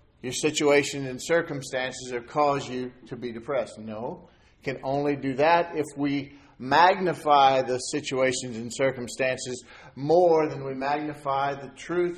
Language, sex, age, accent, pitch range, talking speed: English, male, 50-69, American, 135-180 Hz, 140 wpm